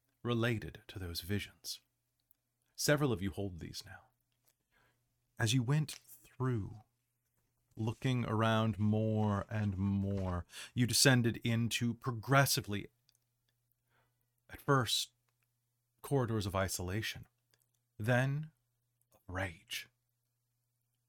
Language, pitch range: English, 110-125 Hz